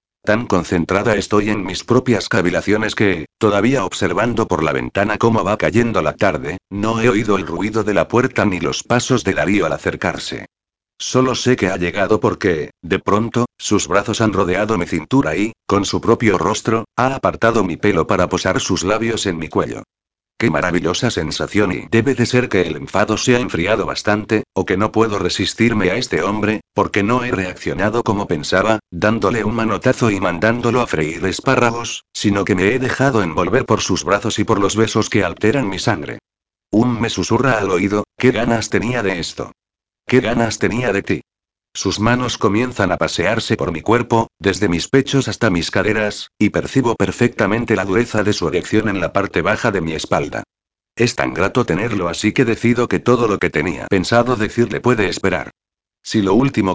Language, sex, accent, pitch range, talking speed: Spanish, male, Spanish, 95-120 Hz, 190 wpm